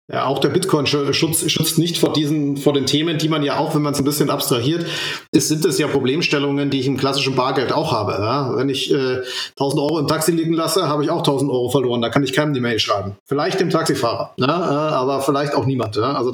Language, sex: German, male